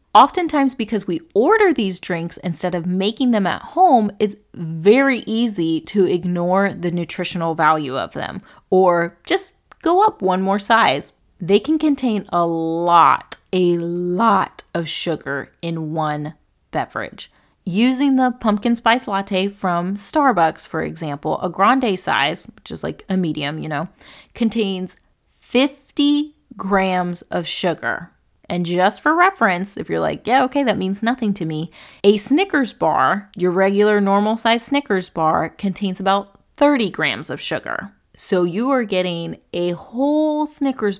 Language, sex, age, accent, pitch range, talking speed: English, female, 30-49, American, 175-235 Hz, 150 wpm